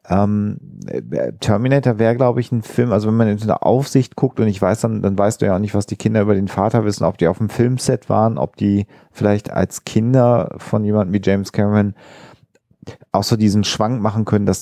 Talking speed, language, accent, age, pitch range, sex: 220 wpm, German, German, 40-59, 95-115 Hz, male